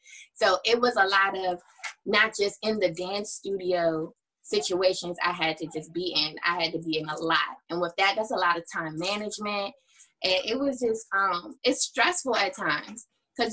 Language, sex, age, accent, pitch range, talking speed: English, female, 20-39, American, 175-205 Hz, 200 wpm